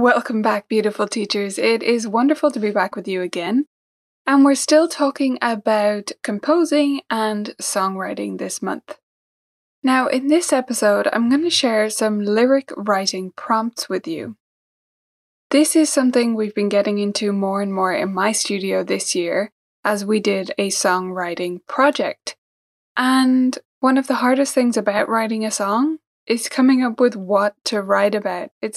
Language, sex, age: English, female, 20-39